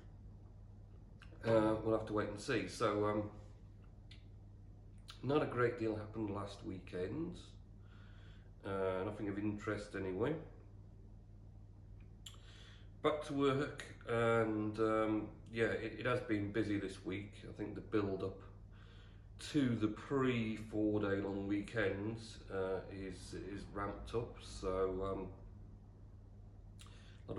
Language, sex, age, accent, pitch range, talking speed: English, male, 40-59, British, 95-105 Hz, 120 wpm